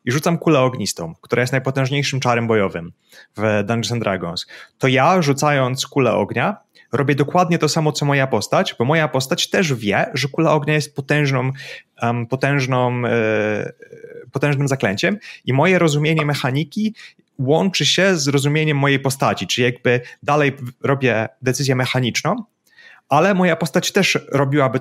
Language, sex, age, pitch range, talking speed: Polish, male, 30-49, 120-150 Hz, 150 wpm